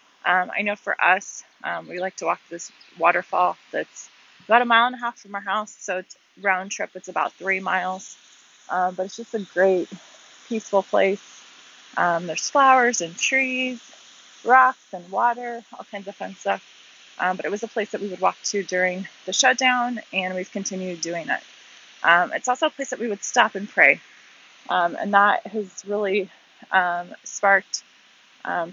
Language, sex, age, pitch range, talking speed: English, female, 20-39, 180-220 Hz, 185 wpm